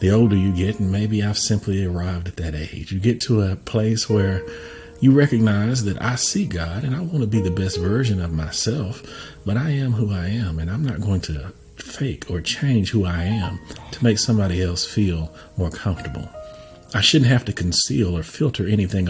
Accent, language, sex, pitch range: American, English, male, 85-115 Hz